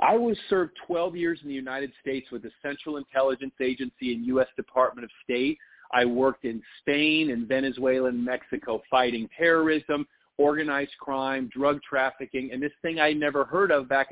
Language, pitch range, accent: English, 135-170 Hz, American